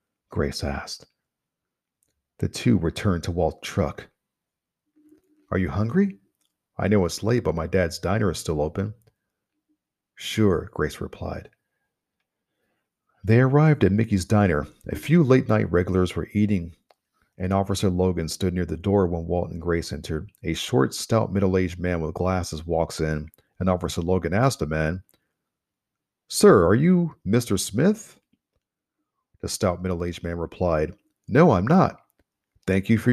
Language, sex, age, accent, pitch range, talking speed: English, male, 40-59, American, 85-105 Hz, 145 wpm